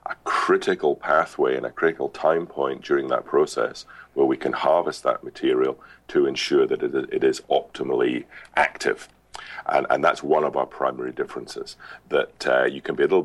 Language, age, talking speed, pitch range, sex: English, 40-59, 175 wpm, 360-405 Hz, male